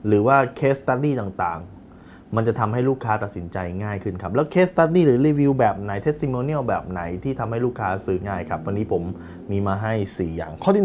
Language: Thai